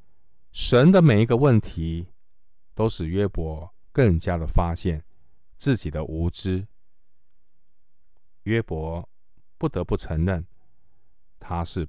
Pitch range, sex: 80-105 Hz, male